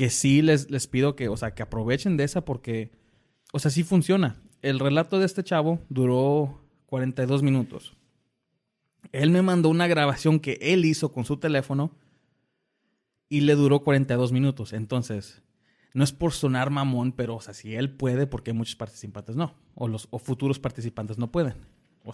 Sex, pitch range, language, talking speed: male, 120-145 Hz, Spanish, 180 wpm